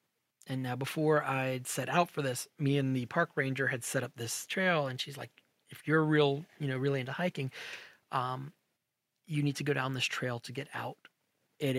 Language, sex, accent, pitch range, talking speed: English, male, American, 125-145 Hz, 215 wpm